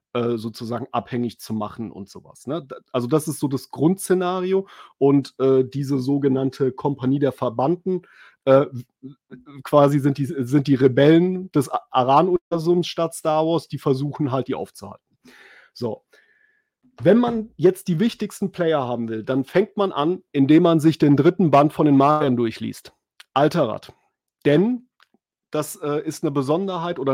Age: 30-49